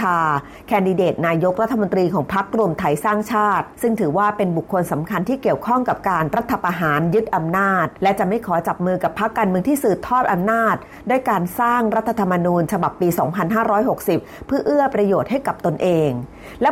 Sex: female